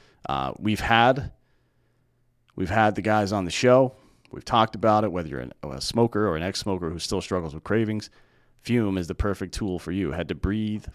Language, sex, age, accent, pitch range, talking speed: English, male, 40-59, American, 80-110 Hz, 195 wpm